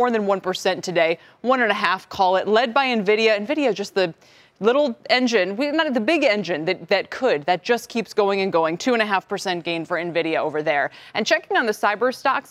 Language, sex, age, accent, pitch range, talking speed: English, female, 20-39, American, 190-270 Hz, 240 wpm